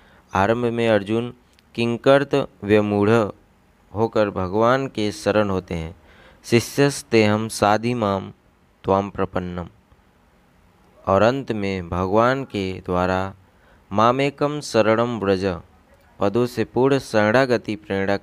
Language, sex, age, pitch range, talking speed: Hindi, male, 20-39, 95-120 Hz, 90 wpm